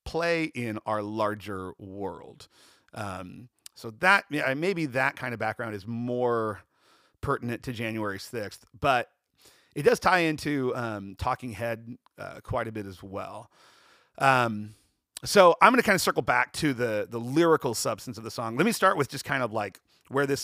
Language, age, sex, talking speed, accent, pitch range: English, 40-59, male, 180 wpm, American, 110-145 Hz